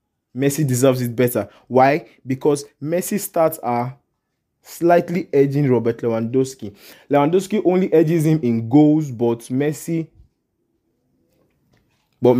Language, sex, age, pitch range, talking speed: English, male, 20-39, 125-165 Hz, 105 wpm